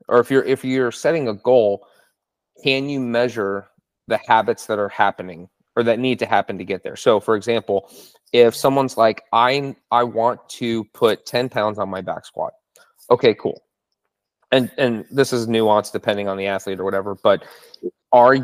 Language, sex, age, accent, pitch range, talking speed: English, male, 30-49, American, 105-125 Hz, 180 wpm